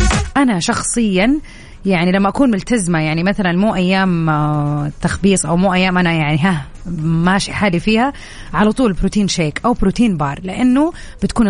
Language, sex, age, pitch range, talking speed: Arabic, female, 30-49, 170-230 Hz, 150 wpm